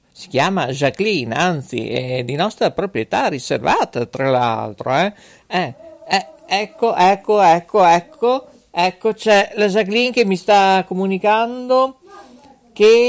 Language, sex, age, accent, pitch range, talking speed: Italian, male, 50-69, native, 130-210 Hz, 125 wpm